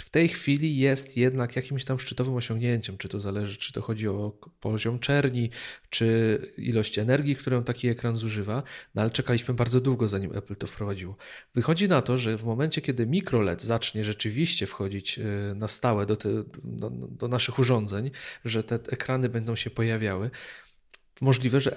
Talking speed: 165 wpm